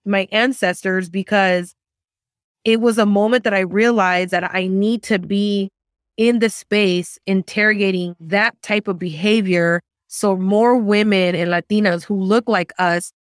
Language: English